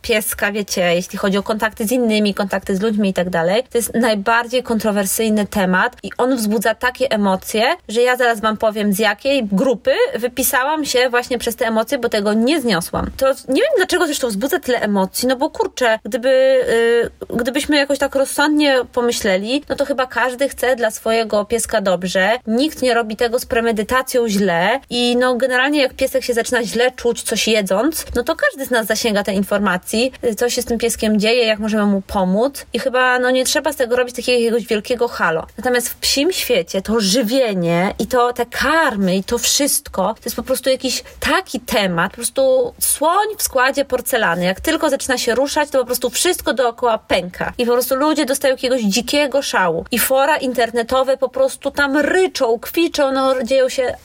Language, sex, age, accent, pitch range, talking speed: Polish, female, 20-39, native, 220-270 Hz, 190 wpm